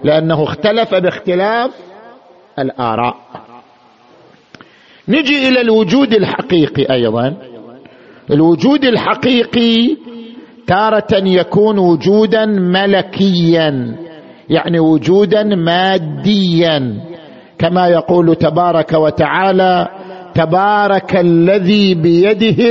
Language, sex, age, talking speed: Arabic, male, 50-69, 65 wpm